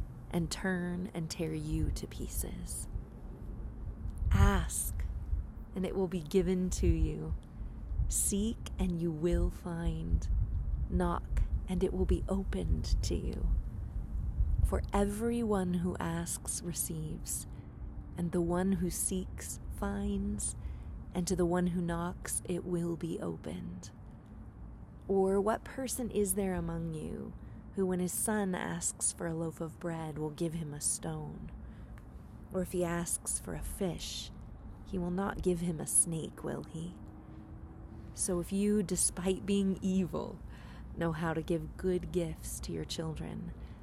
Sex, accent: female, American